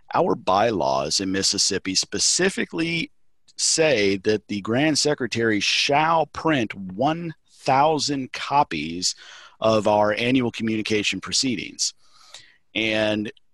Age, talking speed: 40-59, 90 wpm